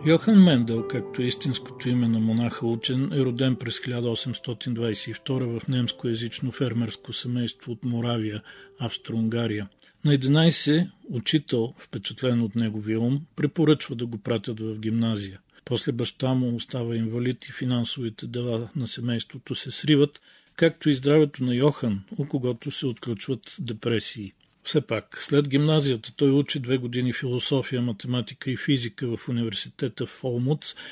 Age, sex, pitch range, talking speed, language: 40-59, male, 115-135 Hz, 135 wpm, Bulgarian